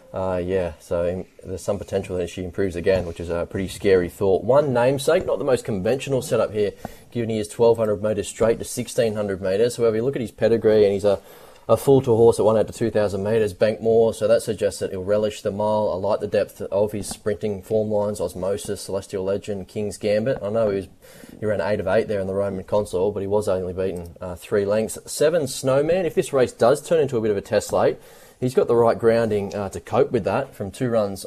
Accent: Australian